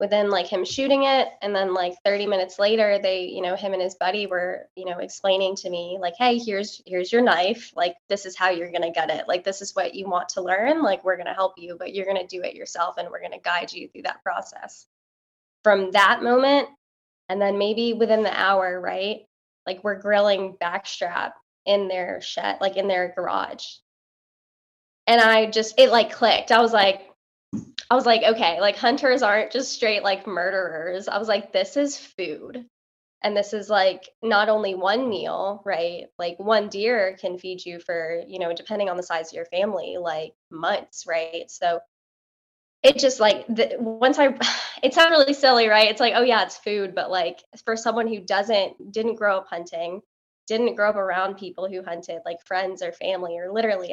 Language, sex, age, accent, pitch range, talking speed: English, female, 10-29, American, 185-225 Hz, 205 wpm